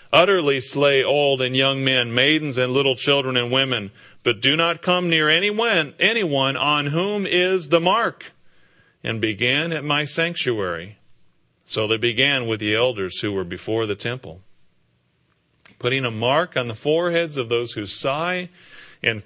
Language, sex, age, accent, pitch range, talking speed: English, male, 40-59, American, 115-150 Hz, 160 wpm